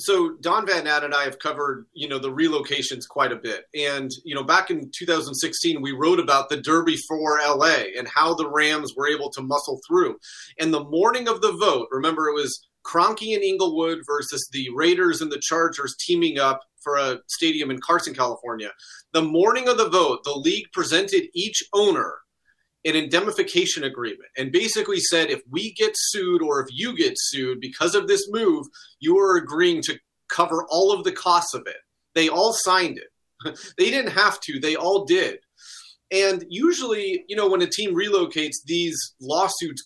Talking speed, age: 185 wpm, 30-49